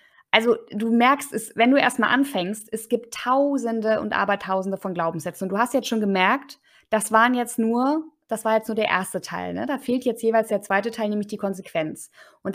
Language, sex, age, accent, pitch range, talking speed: German, female, 20-39, German, 200-240 Hz, 215 wpm